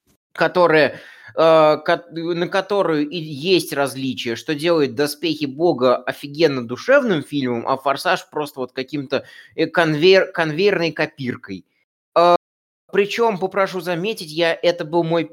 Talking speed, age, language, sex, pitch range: 120 wpm, 20-39, Russian, male, 135-170 Hz